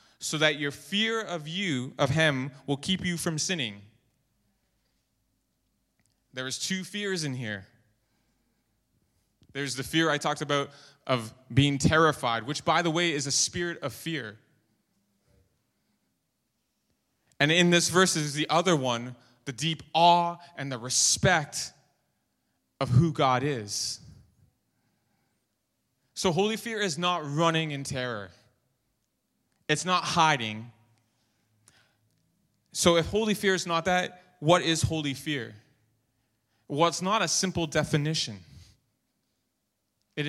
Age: 20-39